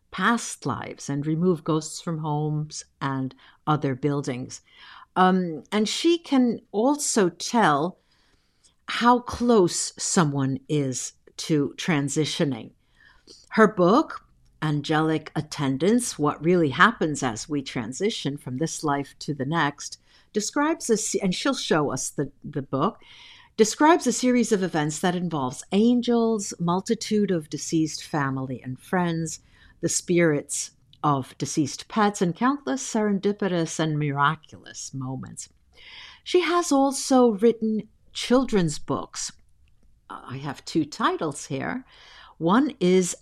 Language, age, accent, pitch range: English, 60-79, American, 150-225 Hz